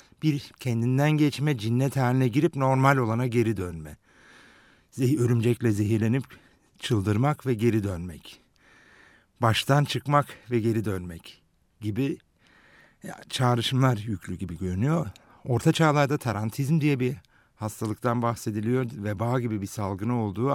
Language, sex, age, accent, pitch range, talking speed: Turkish, male, 60-79, native, 95-130 Hz, 115 wpm